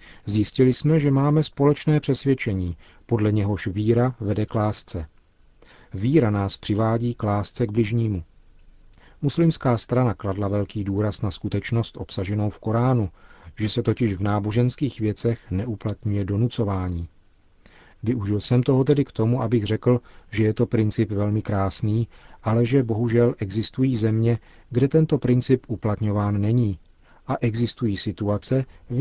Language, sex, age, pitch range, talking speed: Czech, male, 40-59, 100-120 Hz, 130 wpm